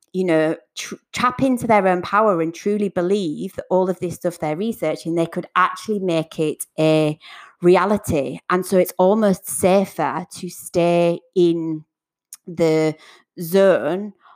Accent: British